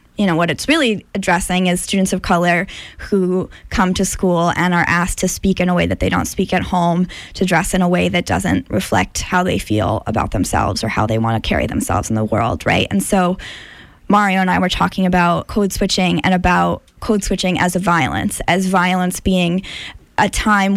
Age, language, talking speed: 10-29, English, 215 wpm